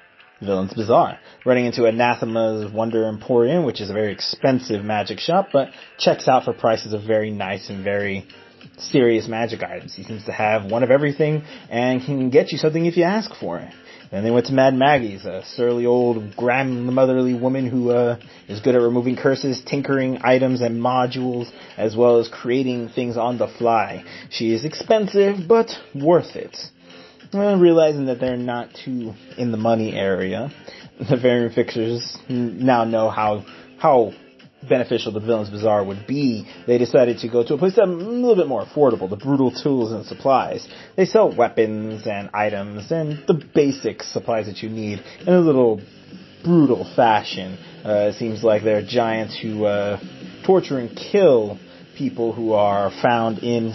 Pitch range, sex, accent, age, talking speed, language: 110-130 Hz, male, American, 30-49, 170 wpm, English